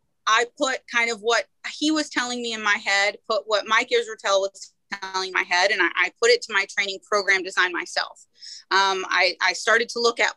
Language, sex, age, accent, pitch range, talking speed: English, female, 30-49, American, 200-265 Hz, 220 wpm